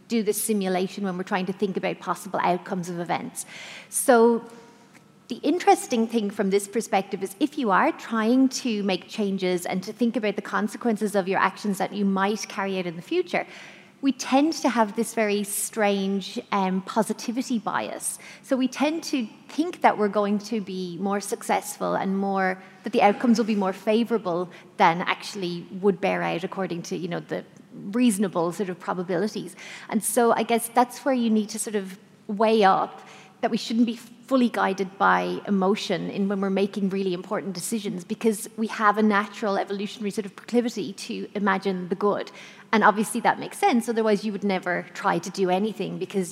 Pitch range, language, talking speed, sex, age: 190-230 Hz, English, 190 wpm, female, 30-49